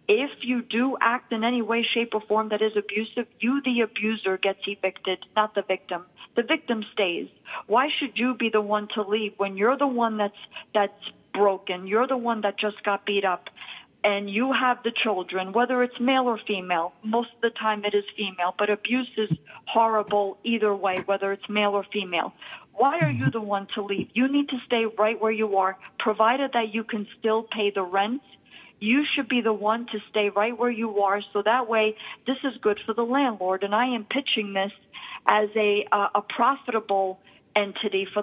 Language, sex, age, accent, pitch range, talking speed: English, female, 50-69, American, 200-235 Hz, 205 wpm